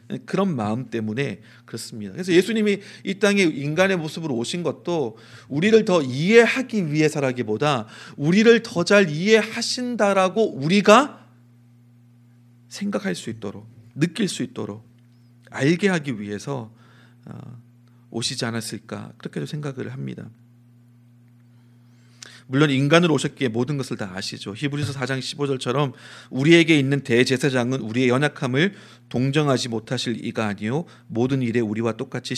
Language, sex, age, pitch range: Korean, male, 40-59, 120-165 Hz